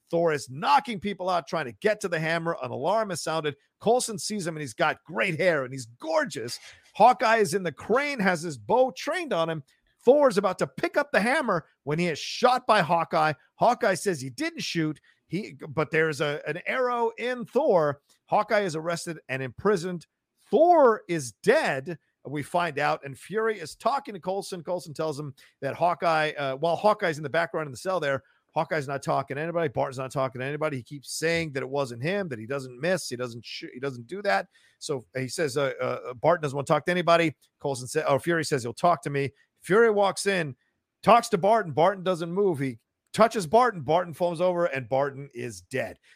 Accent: American